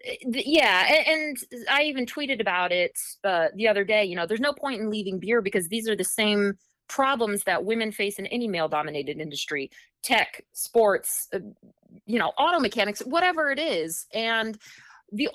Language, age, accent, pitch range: English, 30-49, American, 180-255 Hz